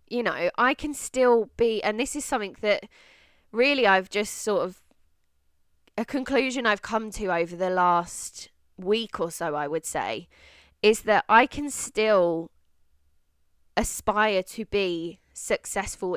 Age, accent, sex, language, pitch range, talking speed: 20-39, British, female, English, 175-230 Hz, 145 wpm